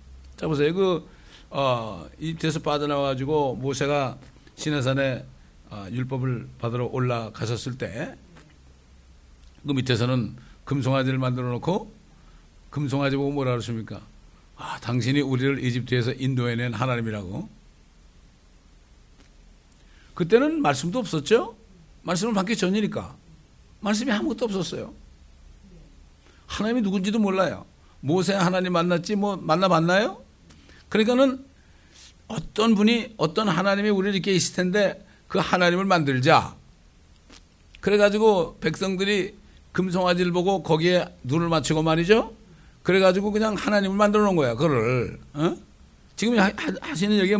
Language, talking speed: English, 95 wpm